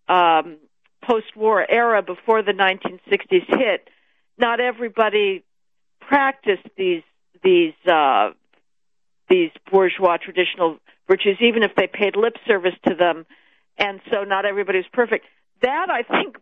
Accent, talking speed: American, 130 wpm